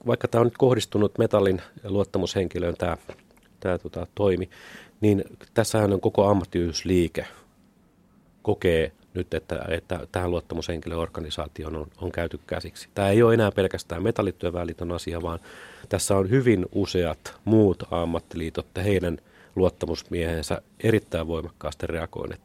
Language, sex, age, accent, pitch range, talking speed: Finnish, male, 30-49, native, 85-105 Hz, 125 wpm